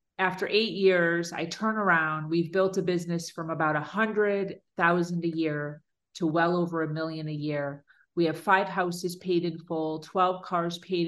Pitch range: 160-185 Hz